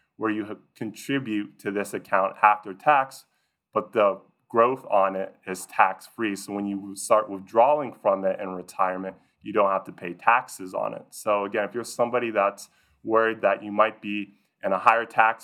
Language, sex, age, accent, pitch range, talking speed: English, male, 20-39, American, 100-115 Hz, 185 wpm